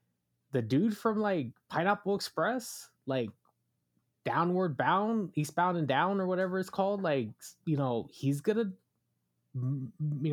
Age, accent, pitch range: 20-39, American, 110-145 Hz